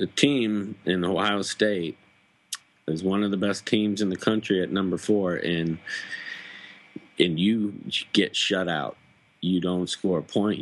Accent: American